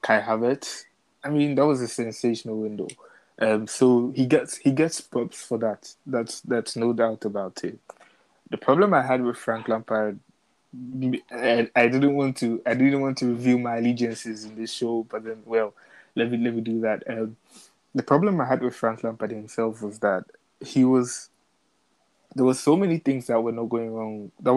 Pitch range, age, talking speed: 115-130 Hz, 20-39, 195 wpm